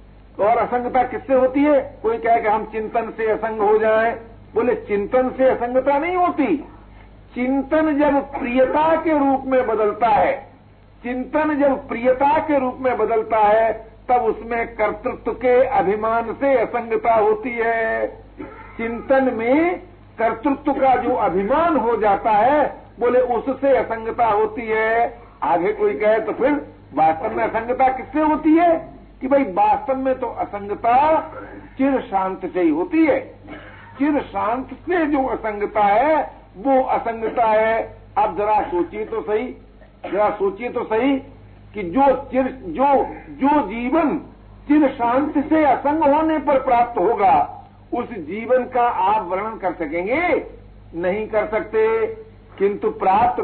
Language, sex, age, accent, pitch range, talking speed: Hindi, male, 60-79, native, 220-295 Hz, 140 wpm